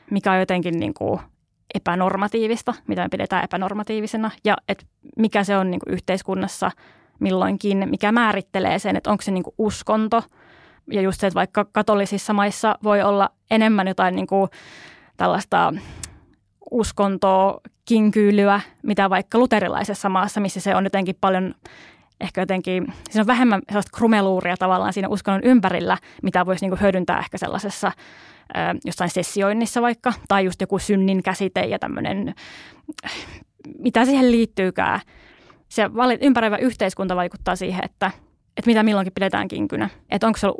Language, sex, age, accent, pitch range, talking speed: Finnish, female, 20-39, native, 190-220 Hz, 145 wpm